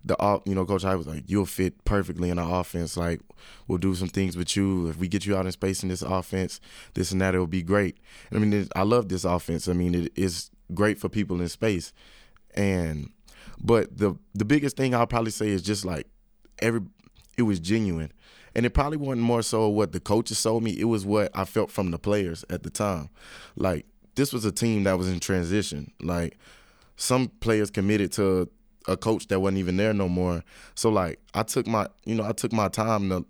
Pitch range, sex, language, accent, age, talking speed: 90-105 Hz, male, English, American, 20-39, 220 wpm